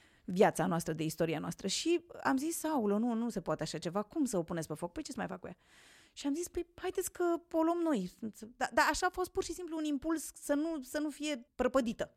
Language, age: Romanian, 30-49